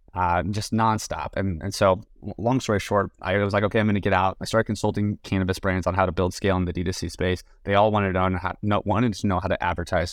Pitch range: 90-105 Hz